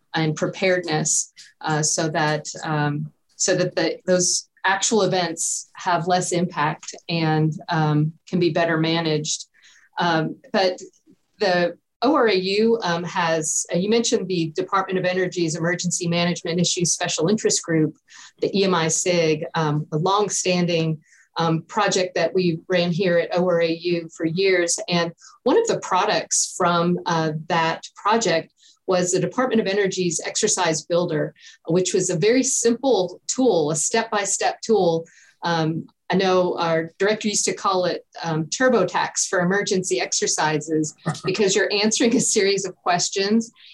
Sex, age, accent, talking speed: female, 40-59, American, 140 wpm